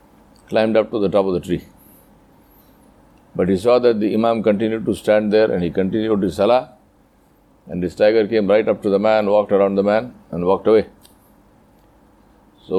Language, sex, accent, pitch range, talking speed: English, male, Indian, 100-115 Hz, 190 wpm